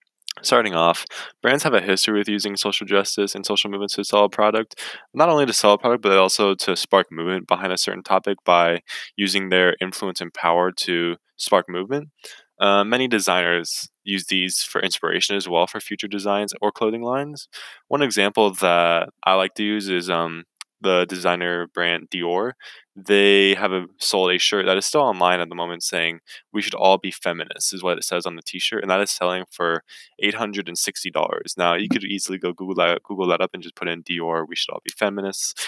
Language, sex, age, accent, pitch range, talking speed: English, male, 20-39, American, 90-105 Hz, 205 wpm